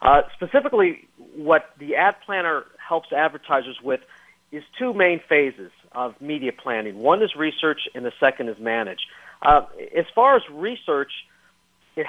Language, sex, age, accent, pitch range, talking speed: English, male, 50-69, American, 130-170 Hz, 150 wpm